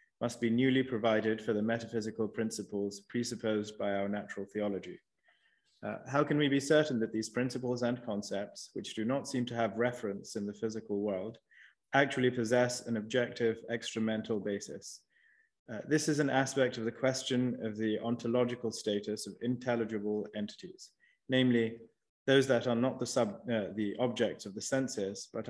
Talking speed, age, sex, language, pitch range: 160 wpm, 20-39, male, English, 110-125 Hz